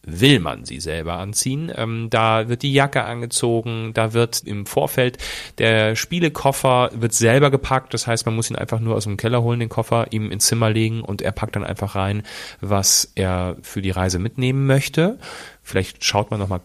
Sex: male